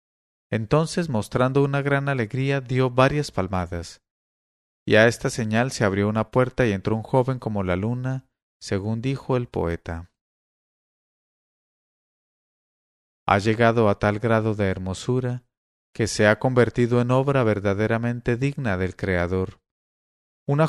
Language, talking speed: English, 130 wpm